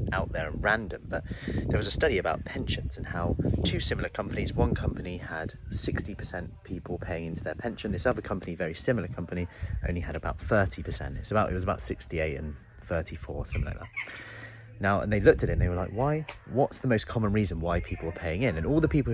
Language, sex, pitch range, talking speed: English, male, 85-110 Hz, 230 wpm